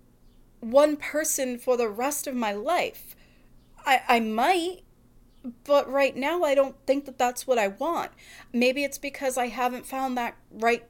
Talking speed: 165 wpm